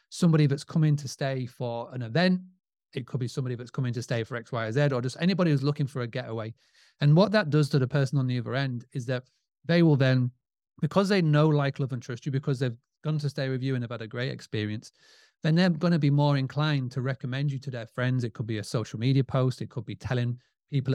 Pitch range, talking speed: 125-155 Hz, 260 wpm